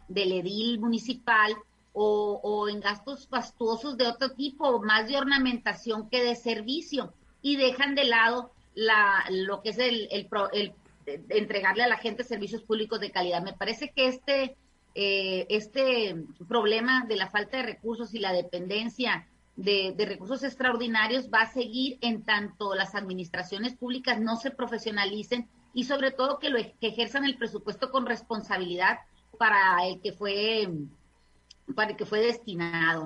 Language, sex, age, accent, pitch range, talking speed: Spanish, female, 30-49, Mexican, 205-250 Hz, 155 wpm